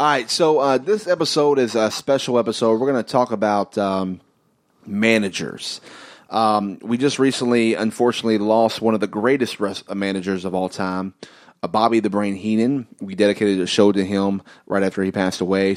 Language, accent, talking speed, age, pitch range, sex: English, American, 185 wpm, 30-49, 95-115 Hz, male